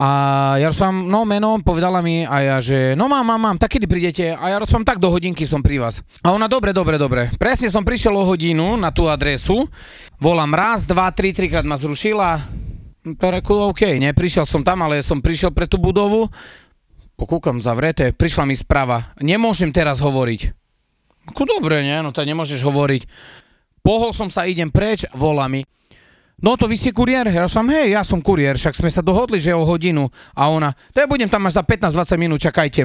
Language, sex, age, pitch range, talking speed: Slovak, male, 30-49, 140-205 Hz, 205 wpm